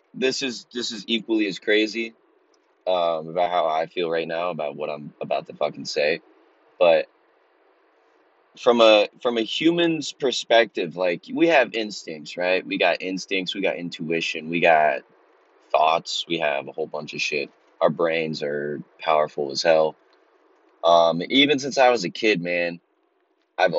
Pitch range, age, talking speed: 85-125 Hz, 20-39, 160 wpm